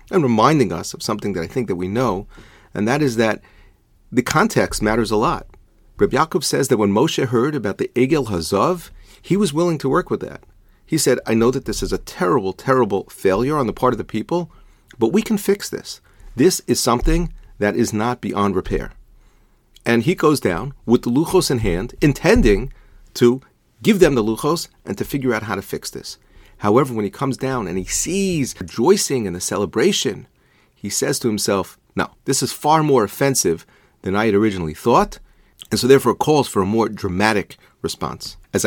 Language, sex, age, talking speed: English, male, 40-59, 200 wpm